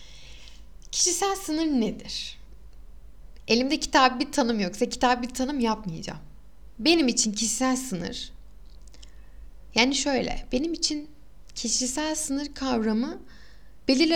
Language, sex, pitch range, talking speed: Turkish, female, 200-280 Hz, 100 wpm